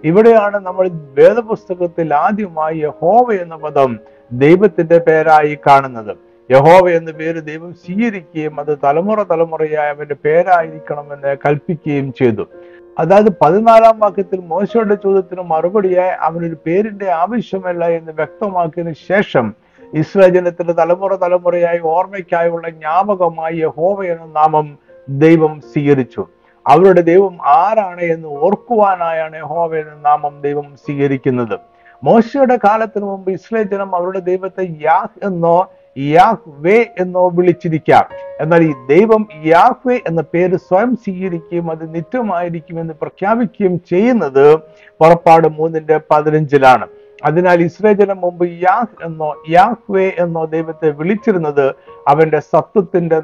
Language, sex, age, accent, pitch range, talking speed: Malayalam, male, 50-69, native, 155-195 Hz, 105 wpm